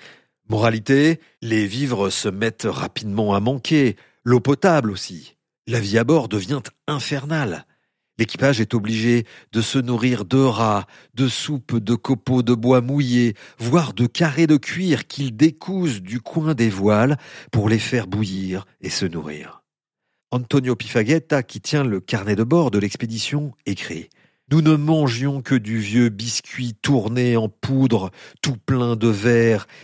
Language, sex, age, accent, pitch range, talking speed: French, male, 50-69, French, 110-135 Hz, 150 wpm